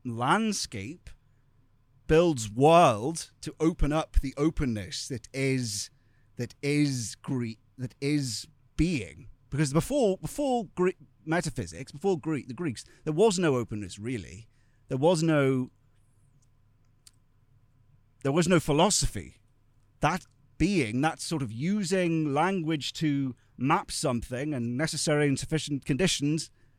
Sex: male